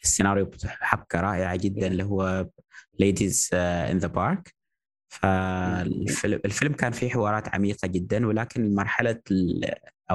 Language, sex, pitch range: Arabic, male, 90-100 Hz